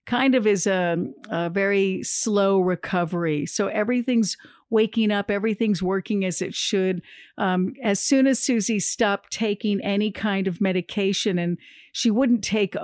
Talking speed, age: 150 wpm, 50-69